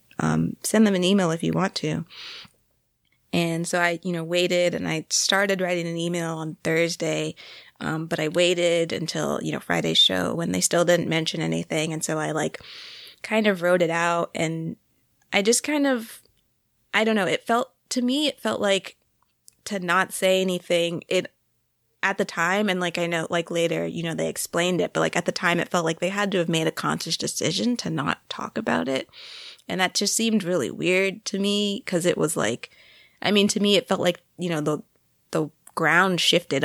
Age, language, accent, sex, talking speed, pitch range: 20-39, English, American, female, 210 wpm, 155-185 Hz